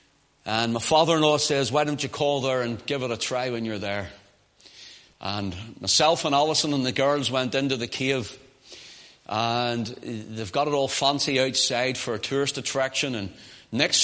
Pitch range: 125-150 Hz